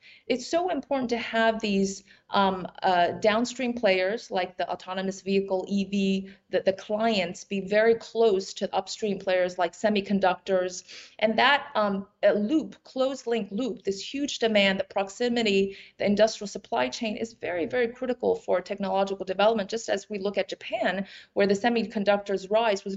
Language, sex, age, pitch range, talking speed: English, female, 30-49, 190-235 Hz, 155 wpm